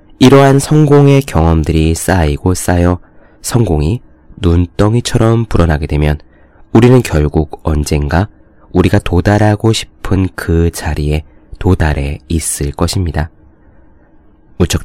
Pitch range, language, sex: 80-110 Hz, Korean, male